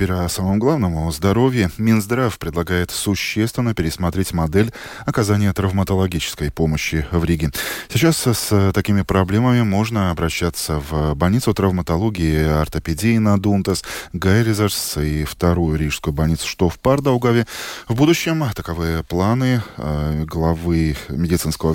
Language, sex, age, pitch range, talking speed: Russian, male, 20-39, 80-110 Hz, 115 wpm